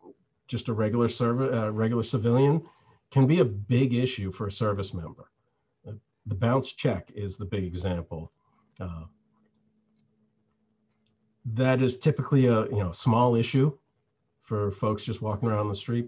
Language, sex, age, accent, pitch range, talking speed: English, male, 50-69, American, 105-130 Hz, 145 wpm